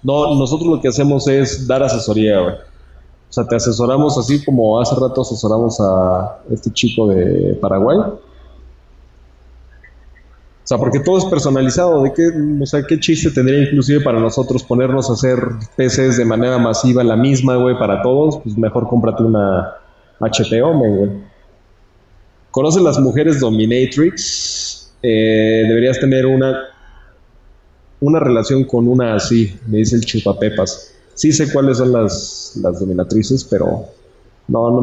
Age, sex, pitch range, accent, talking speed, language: 30-49, male, 100-130 Hz, Mexican, 145 wpm, Spanish